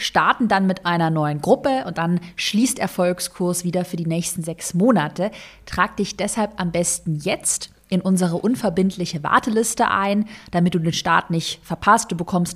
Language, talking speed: German, 165 wpm